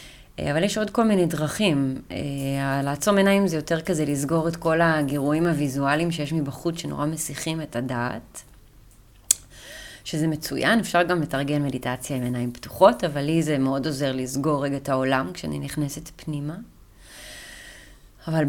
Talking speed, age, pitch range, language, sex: 145 wpm, 20-39, 145-185 Hz, Hebrew, female